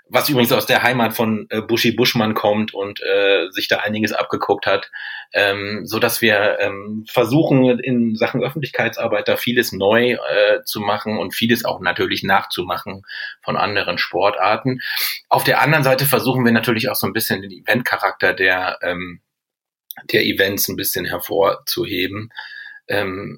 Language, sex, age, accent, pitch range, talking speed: German, male, 30-49, German, 105-125 Hz, 155 wpm